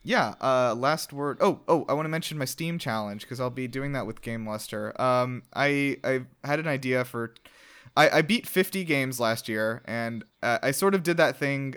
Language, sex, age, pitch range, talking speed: English, male, 20-39, 110-135 Hz, 220 wpm